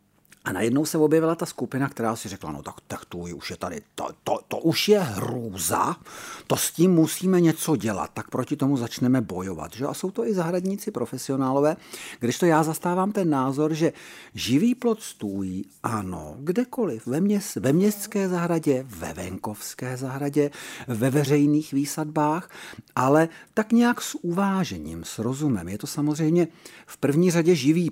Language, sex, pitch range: Czech, male, 110-160 Hz